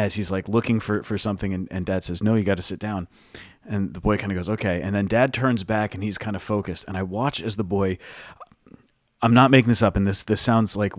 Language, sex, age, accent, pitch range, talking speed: English, male, 30-49, American, 110-145 Hz, 275 wpm